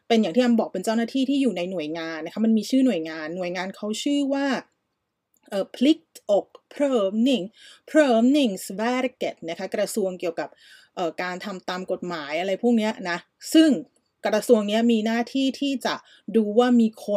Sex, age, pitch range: female, 30-49, 185-245 Hz